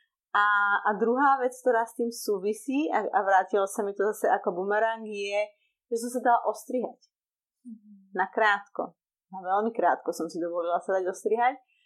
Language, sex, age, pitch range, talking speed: Slovak, female, 30-49, 205-250 Hz, 170 wpm